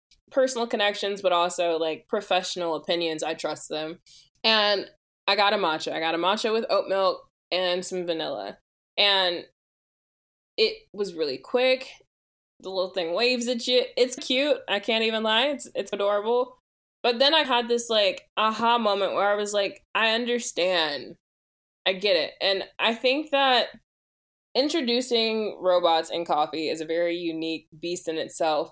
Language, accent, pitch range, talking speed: English, American, 170-235 Hz, 160 wpm